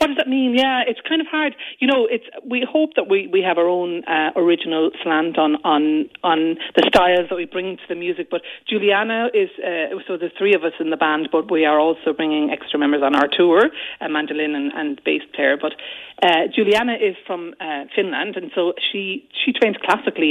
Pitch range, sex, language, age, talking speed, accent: 165-235 Hz, female, English, 40-59, 220 wpm, Irish